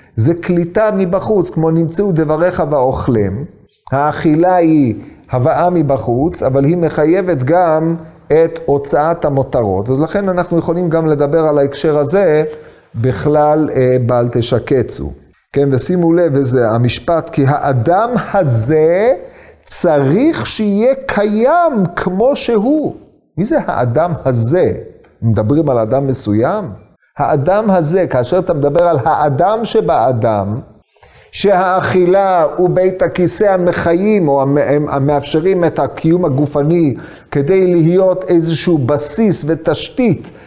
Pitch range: 145-195 Hz